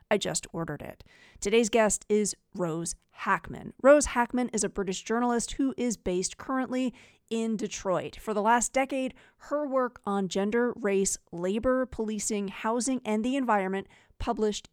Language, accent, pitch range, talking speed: English, American, 190-240 Hz, 150 wpm